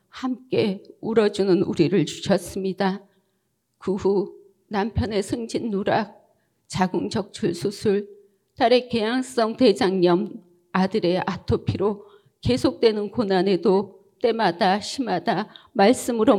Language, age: Korean, 40-59